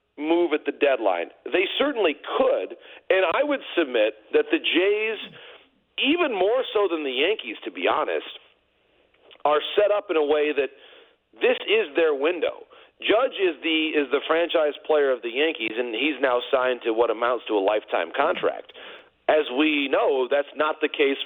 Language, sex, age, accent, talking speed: English, male, 40-59, American, 175 wpm